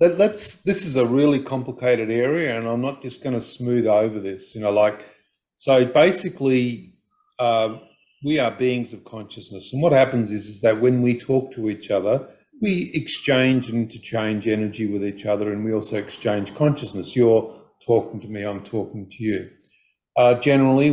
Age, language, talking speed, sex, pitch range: 50-69, English, 180 wpm, male, 110-130 Hz